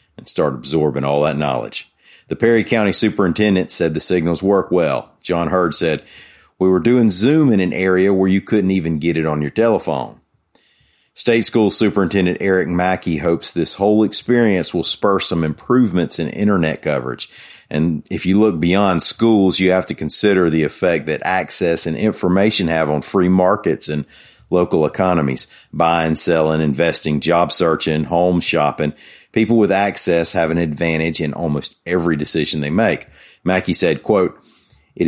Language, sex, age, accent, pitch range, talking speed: English, male, 40-59, American, 80-100 Hz, 165 wpm